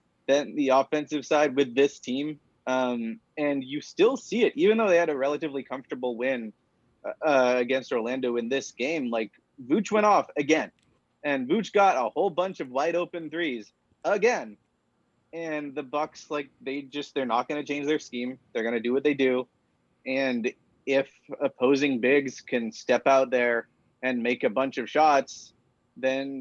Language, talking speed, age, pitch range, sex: English, 175 wpm, 30-49, 130-155 Hz, male